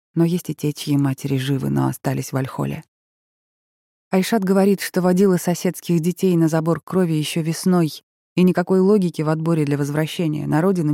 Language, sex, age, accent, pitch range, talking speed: Russian, female, 20-39, native, 140-175 Hz, 170 wpm